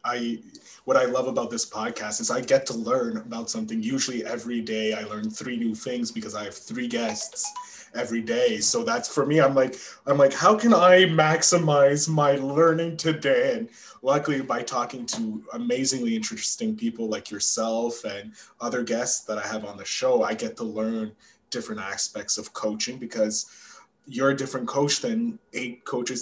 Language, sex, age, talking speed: English, male, 20-39, 180 wpm